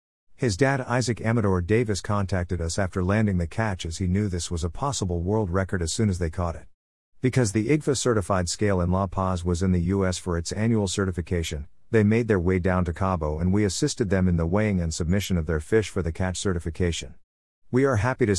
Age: 50-69